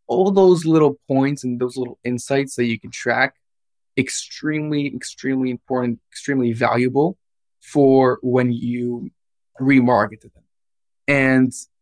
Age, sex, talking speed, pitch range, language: 20-39, male, 120 wpm, 120-140 Hz, English